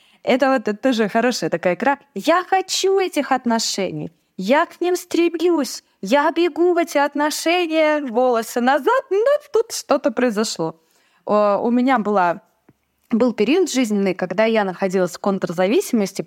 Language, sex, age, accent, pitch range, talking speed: Russian, female, 20-39, native, 190-290 Hz, 140 wpm